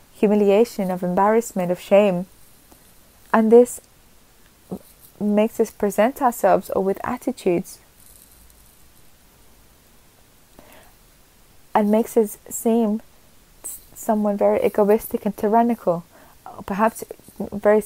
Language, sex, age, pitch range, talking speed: Spanish, female, 20-39, 195-225 Hz, 85 wpm